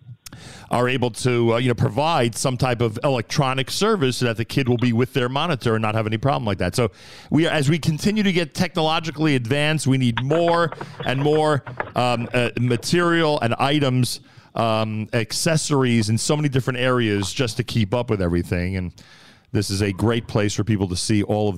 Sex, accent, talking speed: male, American, 200 wpm